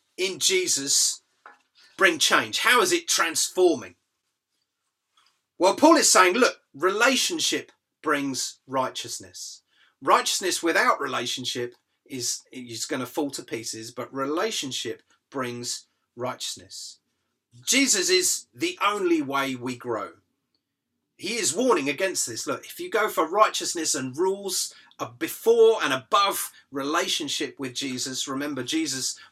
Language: English